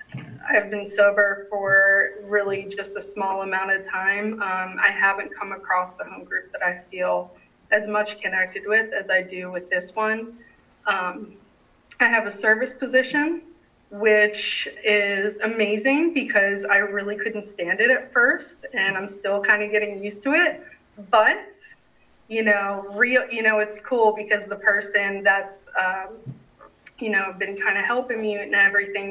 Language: English